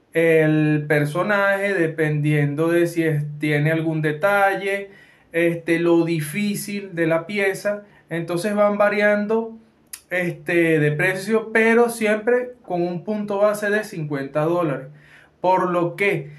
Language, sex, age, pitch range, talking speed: English, male, 20-39, 155-195 Hz, 110 wpm